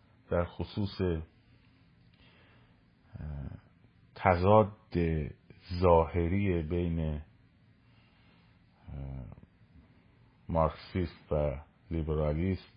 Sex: male